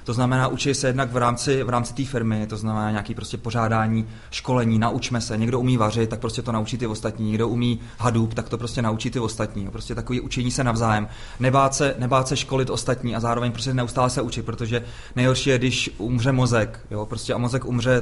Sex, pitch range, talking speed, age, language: male, 115-125 Hz, 215 wpm, 30-49, Czech